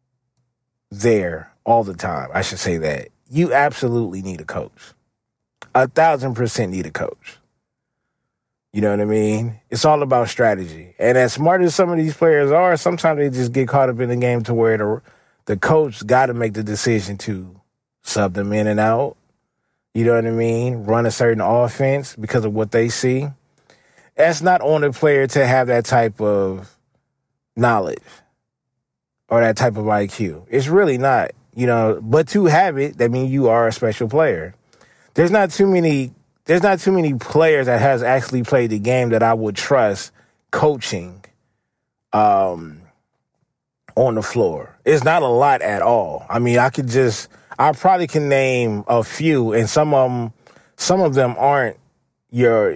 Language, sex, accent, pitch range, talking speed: English, male, American, 110-140 Hz, 180 wpm